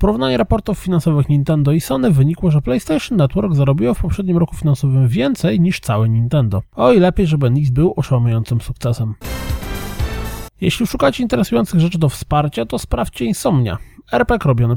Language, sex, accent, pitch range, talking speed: Polish, male, native, 120-175 Hz, 155 wpm